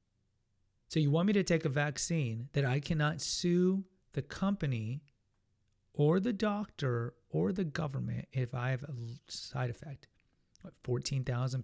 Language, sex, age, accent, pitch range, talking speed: English, male, 30-49, American, 120-145 Hz, 140 wpm